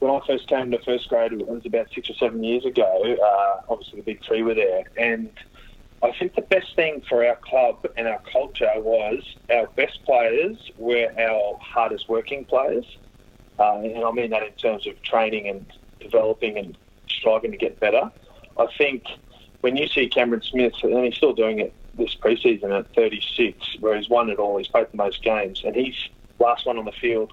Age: 20-39